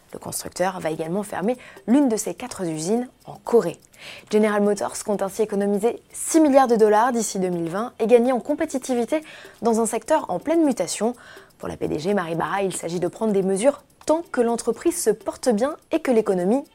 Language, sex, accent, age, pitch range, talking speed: French, female, French, 20-39, 185-265 Hz, 185 wpm